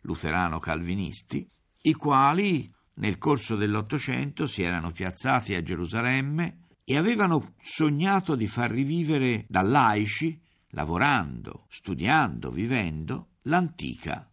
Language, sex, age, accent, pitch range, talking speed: Italian, male, 50-69, native, 80-115 Hz, 95 wpm